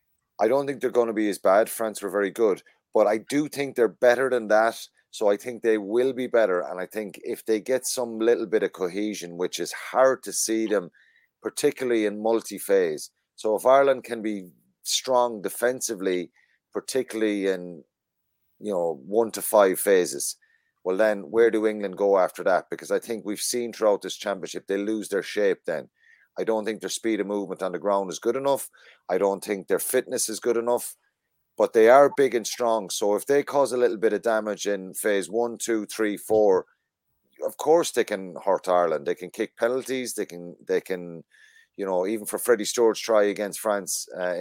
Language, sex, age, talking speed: English, male, 30-49, 205 wpm